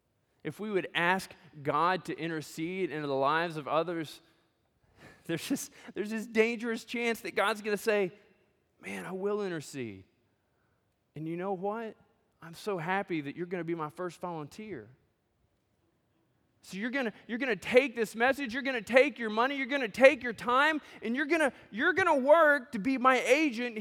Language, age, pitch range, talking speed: English, 20-39, 170-275 Hz, 185 wpm